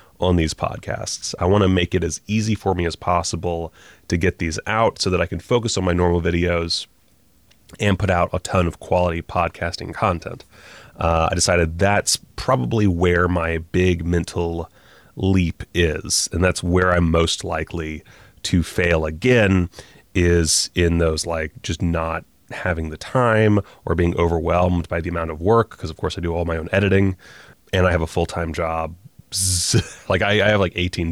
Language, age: English, 30-49